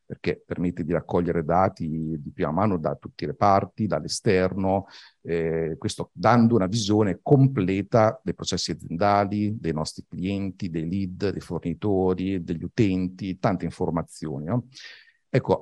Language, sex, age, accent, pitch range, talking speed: Italian, male, 50-69, native, 90-115 Hz, 135 wpm